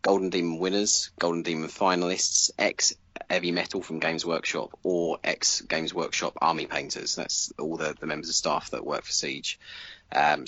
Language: English